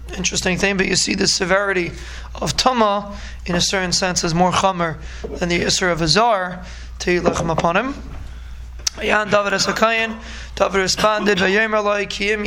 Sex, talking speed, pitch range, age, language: male, 160 wpm, 180-205 Hz, 20-39, English